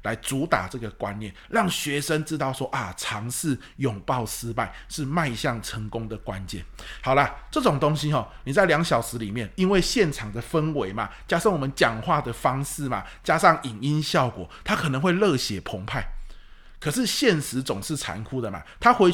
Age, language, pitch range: 20-39, Chinese, 125-195 Hz